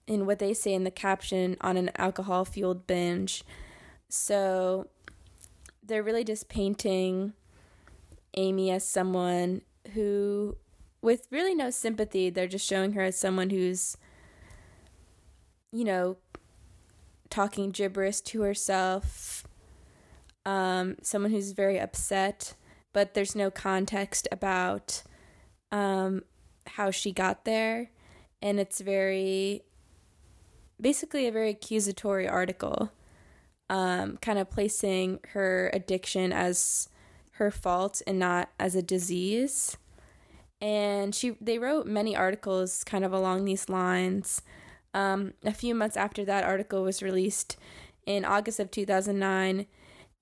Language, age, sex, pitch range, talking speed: English, 20-39, female, 185-205 Hz, 115 wpm